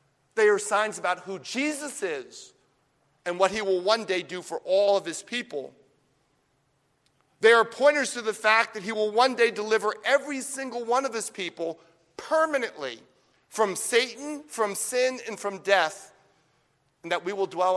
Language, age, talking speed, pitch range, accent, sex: English, 50-69, 170 wpm, 150-235 Hz, American, male